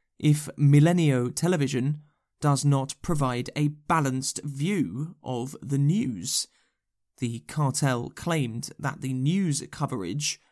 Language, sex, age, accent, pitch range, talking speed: English, male, 20-39, British, 125-150 Hz, 110 wpm